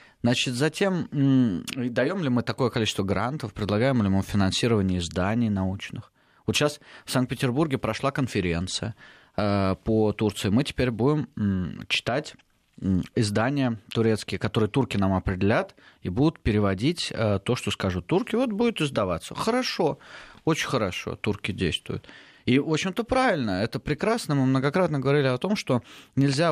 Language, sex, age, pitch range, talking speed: Russian, male, 20-39, 110-155 Hz, 135 wpm